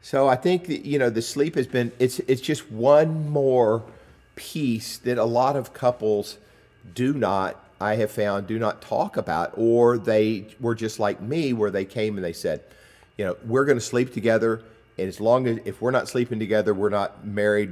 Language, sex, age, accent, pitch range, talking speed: English, male, 50-69, American, 105-125 Hz, 205 wpm